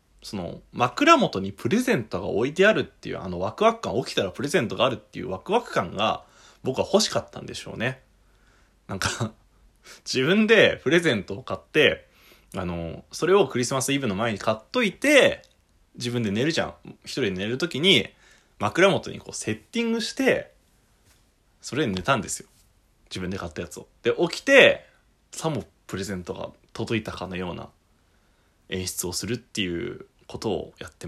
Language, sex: Japanese, male